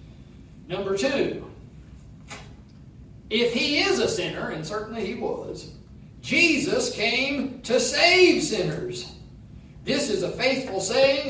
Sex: male